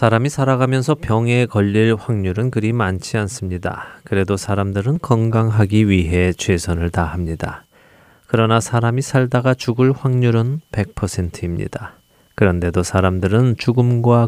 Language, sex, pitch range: Korean, male, 95-125 Hz